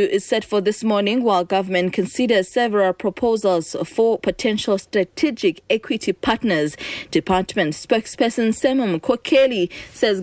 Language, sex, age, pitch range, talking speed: English, female, 20-39, 185-240 Hz, 115 wpm